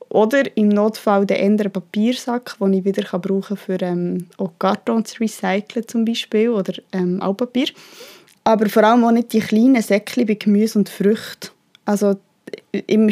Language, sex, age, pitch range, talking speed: German, female, 20-39, 195-230 Hz, 160 wpm